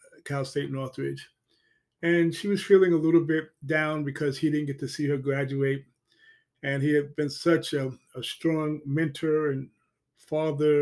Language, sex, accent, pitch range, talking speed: English, male, American, 140-170 Hz, 165 wpm